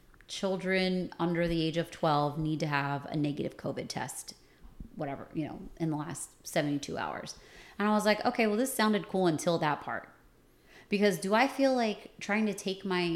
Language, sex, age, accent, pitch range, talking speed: English, female, 30-49, American, 150-190 Hz, 190 wpm